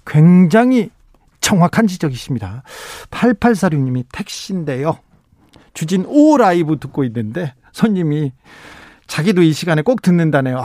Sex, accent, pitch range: male, native, 135-190 Hz